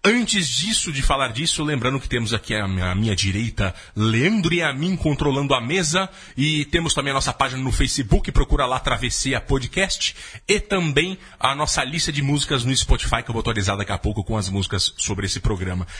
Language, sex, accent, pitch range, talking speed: Portuguese, male, Brazilian, 110-160 Hz, 205 wpm